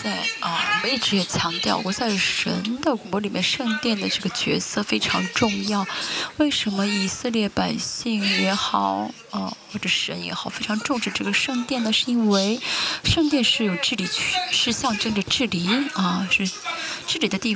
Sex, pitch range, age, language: female, 190-250 Hz, 20-39, Chinese